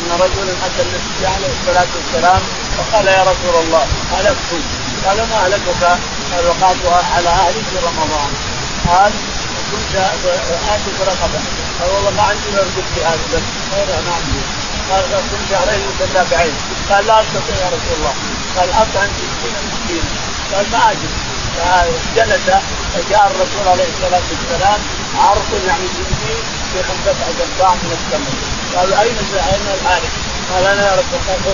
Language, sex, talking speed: Arabic, male, 145 wpm